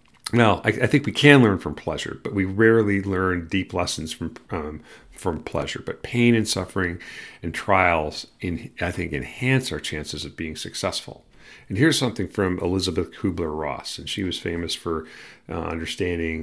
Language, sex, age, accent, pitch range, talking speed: English, male, 40-59, American, 80-100 Hz, 175 wpm